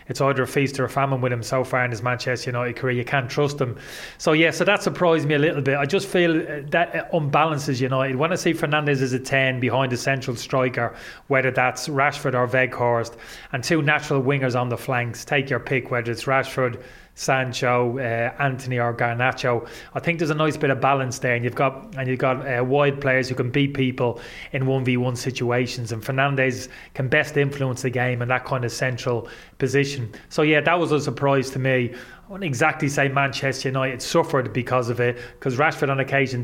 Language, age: English, 20-39